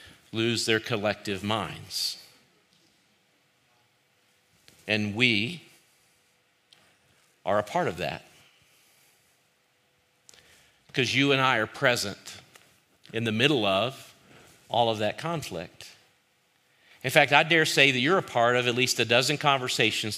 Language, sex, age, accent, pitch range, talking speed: English, male, 50-69, American, 115-145 Hz, 120 wpm